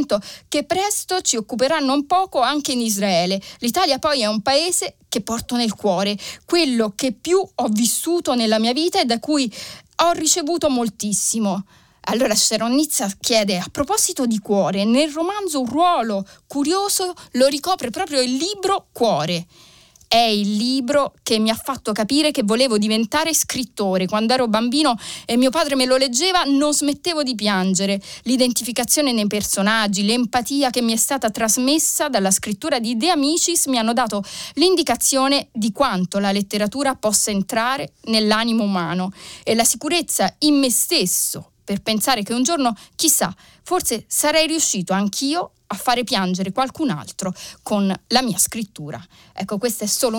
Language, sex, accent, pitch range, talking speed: Italian, female, native, 210-285 Hz, 155 wpm